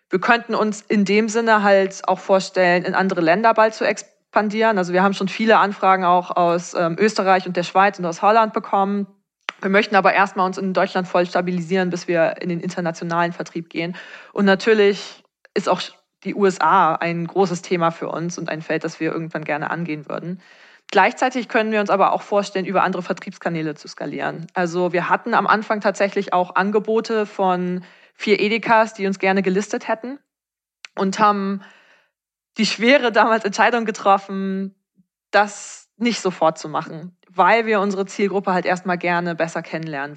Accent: German